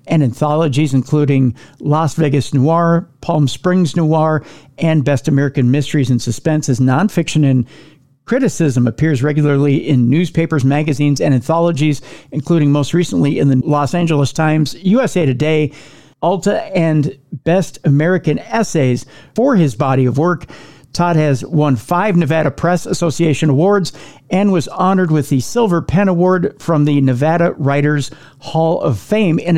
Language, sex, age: English, male, 50-69